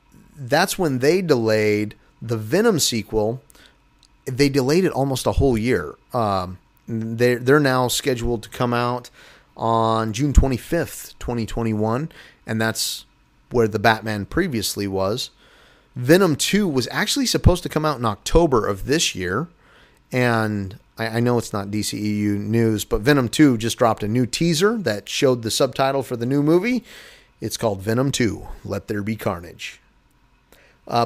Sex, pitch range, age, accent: male, 110-140 Hz, 30-49, American